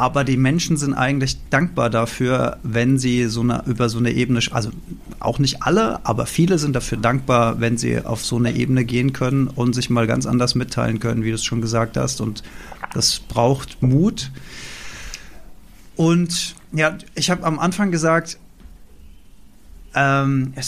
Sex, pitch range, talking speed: male, 120-140 Hz, 160 wpm